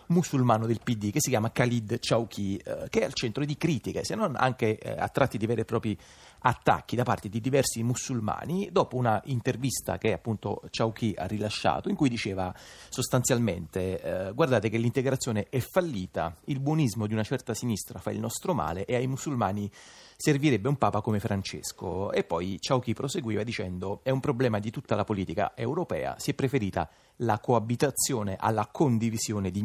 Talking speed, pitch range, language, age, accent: 180 wpm, 105-130 Hz, Italian, 30-49, native